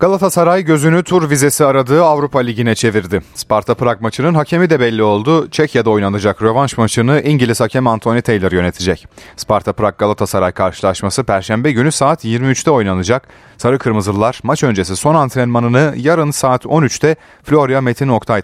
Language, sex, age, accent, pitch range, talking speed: Turkish, male, 30-49, native, 100-145 Hz, 135 wpm